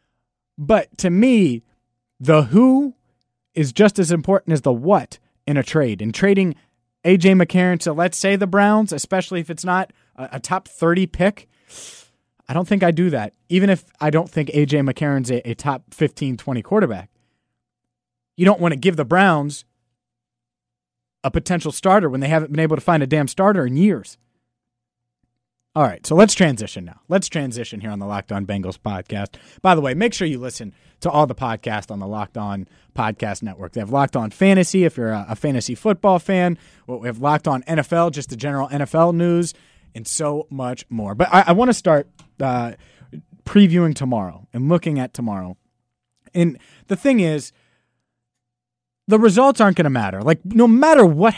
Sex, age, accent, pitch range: male, 30-49, American, 120-180 Hz